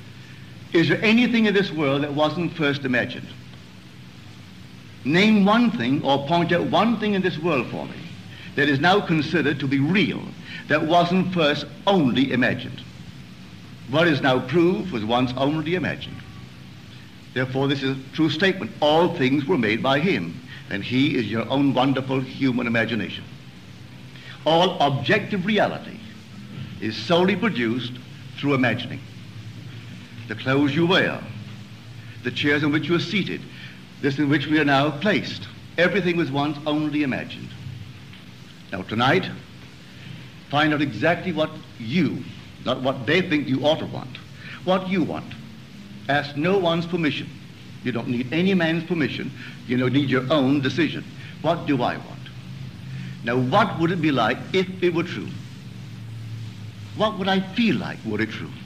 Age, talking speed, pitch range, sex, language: 60-79, 155 wpm, 125-170 Hz, male, English